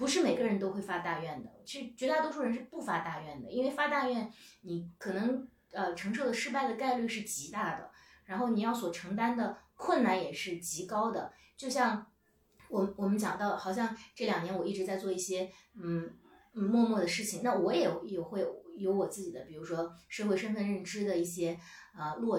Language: Chinese